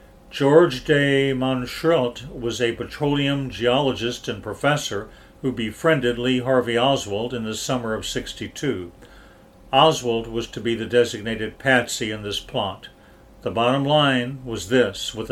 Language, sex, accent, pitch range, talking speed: English, male, American, 110-135 Hz, 135 wpm